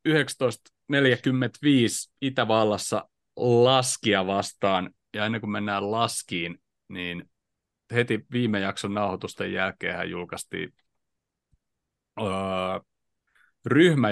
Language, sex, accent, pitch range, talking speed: Finnish, male, native, 100-125 Hz, 75 wpm